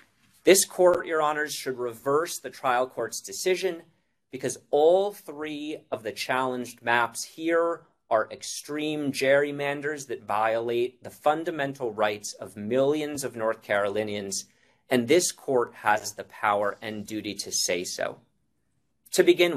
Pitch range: 115-165 Hz